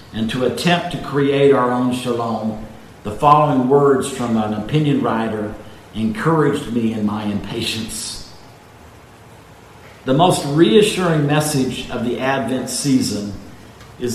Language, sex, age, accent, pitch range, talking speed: English, male, 50-69, American, 110-145 Hz, 125 wpm